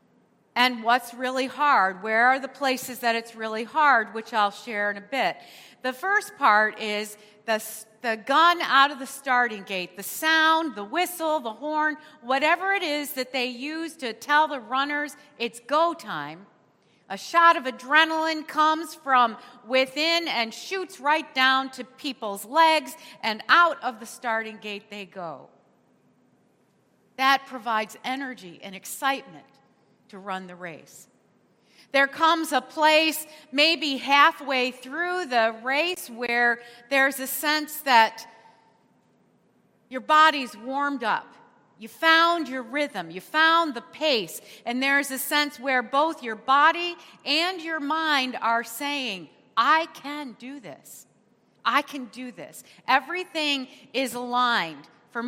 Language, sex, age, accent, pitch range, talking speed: English, female, 40-59, American, 230-305 Hz, 140 wpm